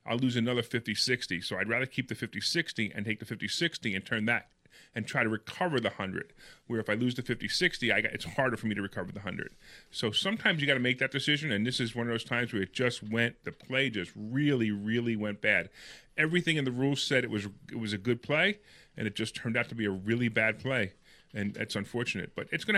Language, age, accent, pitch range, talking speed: English, 30-49, American, 115-150 Hz, 240 wpm